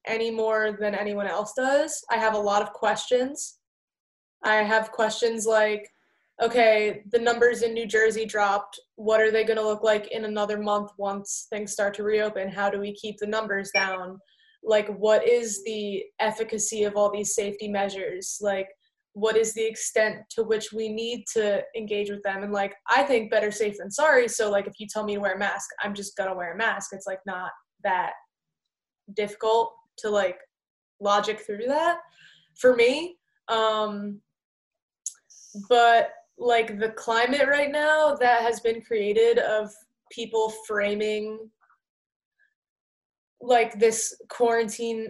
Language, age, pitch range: English, 20-39, 210-235 Hz